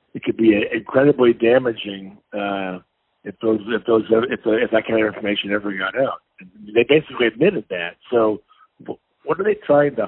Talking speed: 165 wpm